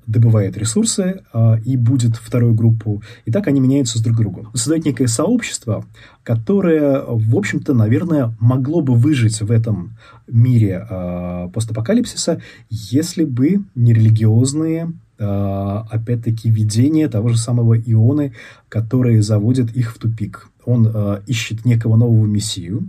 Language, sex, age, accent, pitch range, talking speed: Russian, male, 20-39, native, 110-125 Hz, 130 wpm